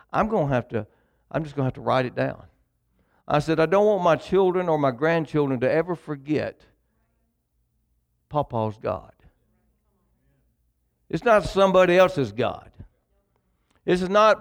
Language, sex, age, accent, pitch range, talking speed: English, male, 60-79, American, 145-195 Hz, 155 wpm